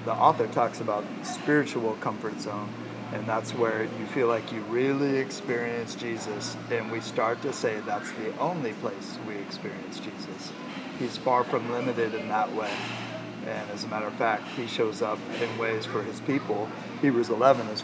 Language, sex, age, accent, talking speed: English, male, 40-59, American, 180 wpm